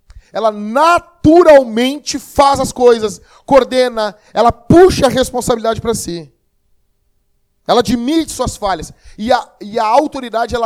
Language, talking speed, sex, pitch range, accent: Portuguese, 115 wpm, male, 170-230 Hz, Brazilian